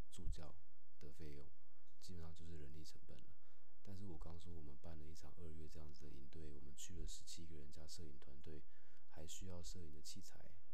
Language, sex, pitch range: Chinese, male, 75-90 Hz